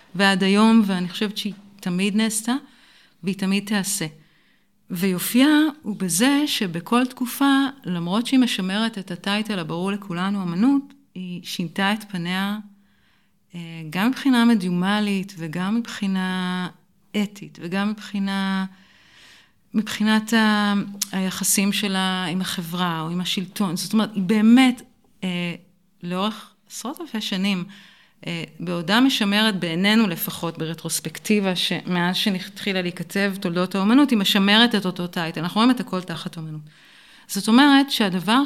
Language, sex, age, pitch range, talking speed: Hebrew, female, 40-59, 180-220 Hz, 115 wpm